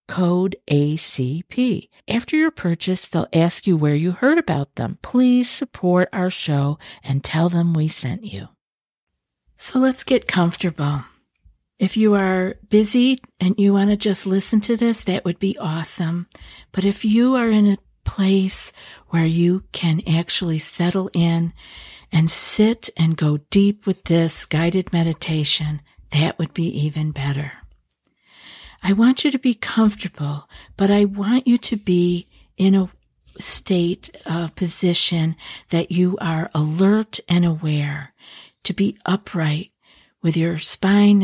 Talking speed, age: 145 wpm, 50-69